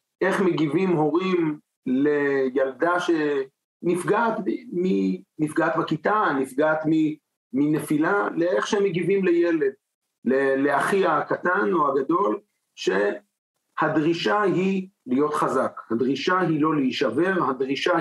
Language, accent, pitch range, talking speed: Hebrew, native, 135-185 Hz, 85 wpm